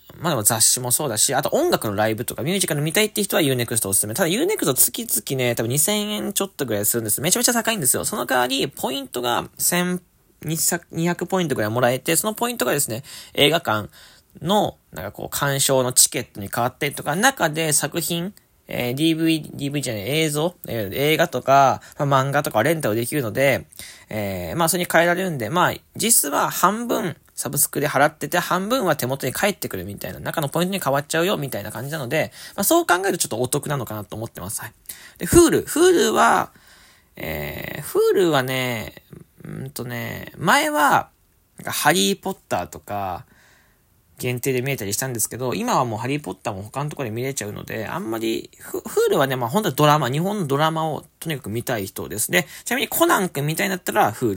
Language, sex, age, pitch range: Japanese, male, 20-39, 120-175 Hz